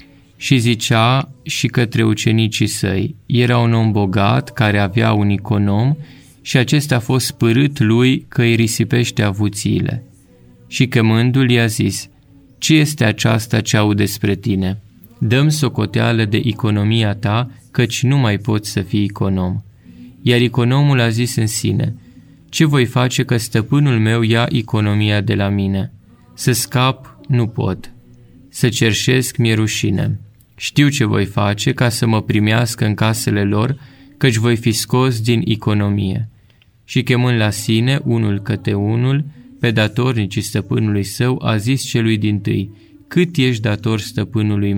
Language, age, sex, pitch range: Romanian, 20-39, male, 105-125 Hz